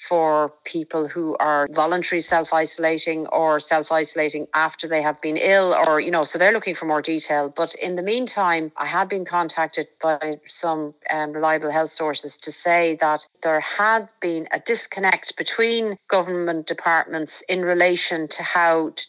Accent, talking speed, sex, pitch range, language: Irish, 165 wpm, female, 155-180 Hz, English